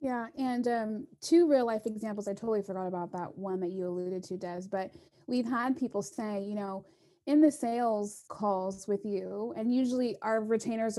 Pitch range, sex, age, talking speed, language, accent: 210-265 Hz, female, 20-39, 190 wpm, English, American